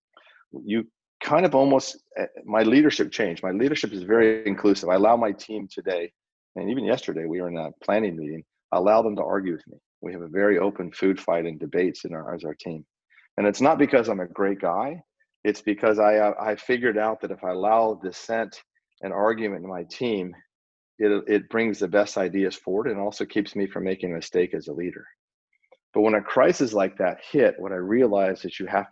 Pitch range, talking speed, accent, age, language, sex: 95-110 Hz, 210 wpm, American, 40-59, English, male